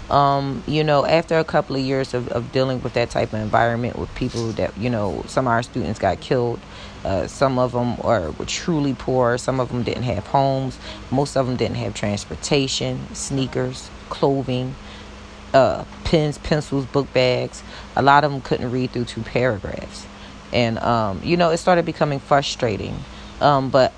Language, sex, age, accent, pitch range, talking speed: English, female, 30-49, American, 115-140 Hz, 185 wpm